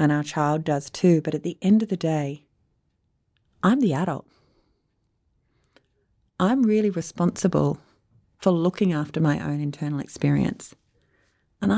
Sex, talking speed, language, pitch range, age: female, 130 wpm, English, 150-200 Hz, 30-49